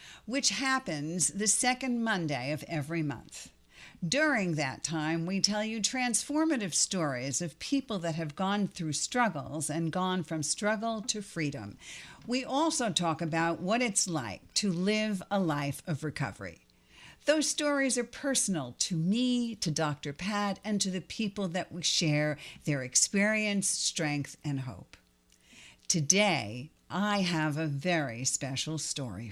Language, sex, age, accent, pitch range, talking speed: English, female, 60-79, American, 150-220 Hz, 145 wpm